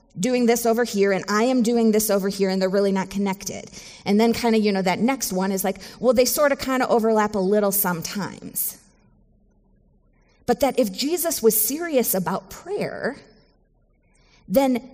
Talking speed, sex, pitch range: 185 wpm, female, 195-235 Hz